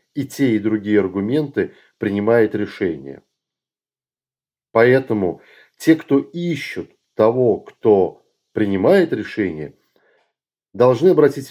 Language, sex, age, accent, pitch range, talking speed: Russian, male, 40-59, native, 105-125 Hz, 90 wpm